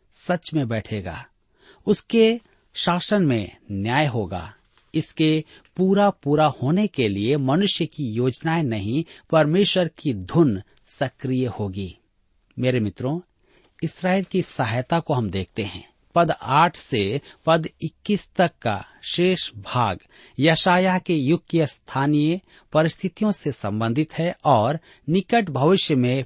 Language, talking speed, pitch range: Hindi, 125 wpm, 110-170 Hz